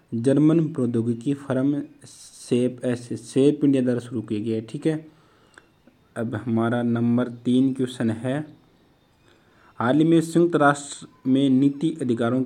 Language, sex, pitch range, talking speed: Hindi, male, 120-140 Hz, 135 wpm